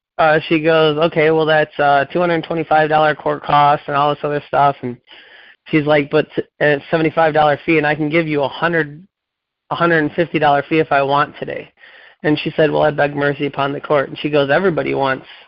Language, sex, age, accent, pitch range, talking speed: English, male, 20-39, American, 150-165 Hz, 200 wpm